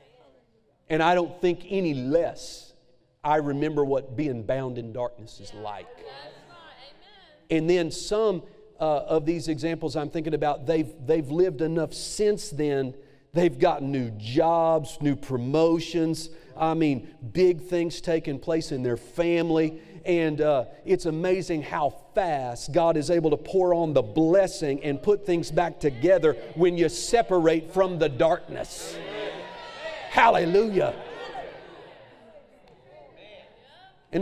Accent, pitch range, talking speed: American, 150-185 Hz, 130 wpm